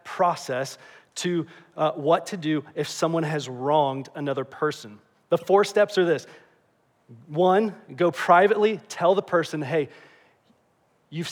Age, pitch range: 30-49, 145-185 Hz